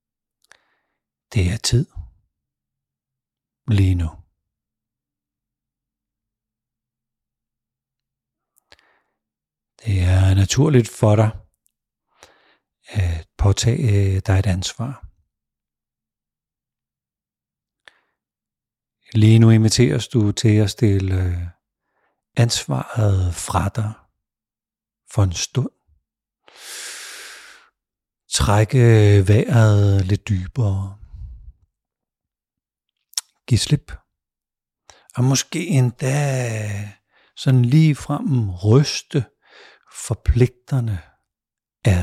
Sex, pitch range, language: male, 95-115 Hz, Danish